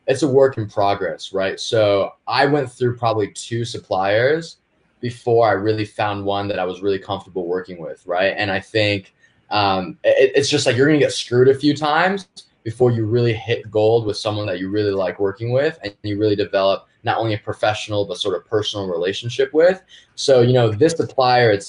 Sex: male